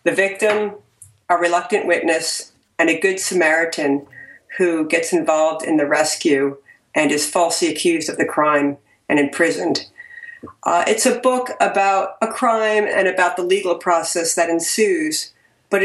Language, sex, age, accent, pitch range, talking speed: English, female, 50-69, American, 155-195 Hz, 150 wpm